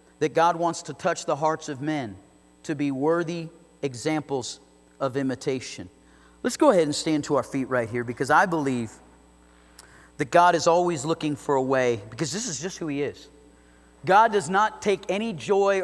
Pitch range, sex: 130-205 Hz, male